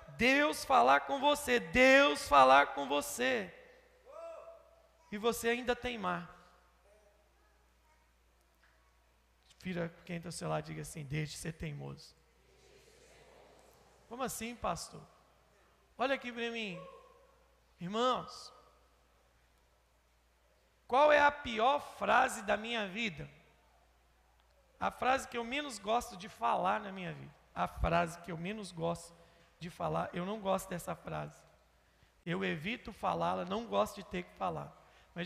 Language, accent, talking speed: Portuguese, Brazilian, 125 wpm